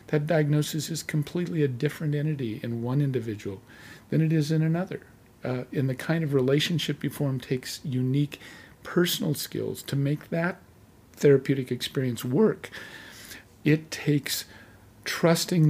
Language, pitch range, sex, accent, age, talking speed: English, 125-150 Hz, male, American, 50-69, 140 wpm